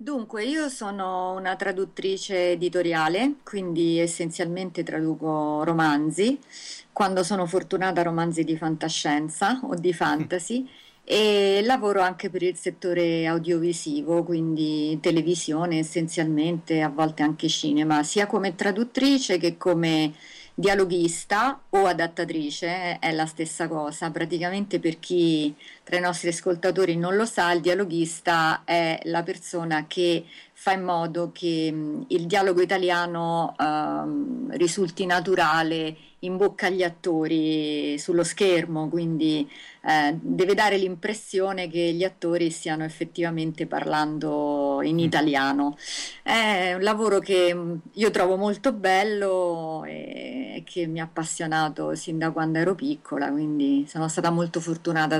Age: 40-59